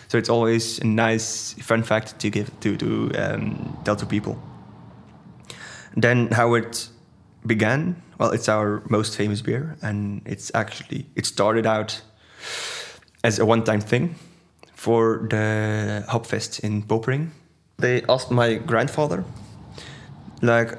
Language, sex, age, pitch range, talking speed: English, male, 20-39, 110-125 Hz, 125 wpm